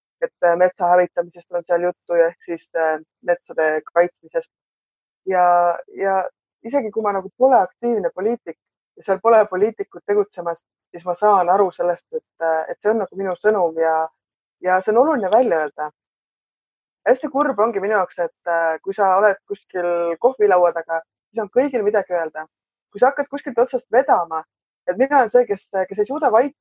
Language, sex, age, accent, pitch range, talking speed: English, female, 20-39, Finnish, 175-250 Hz, 165 wpm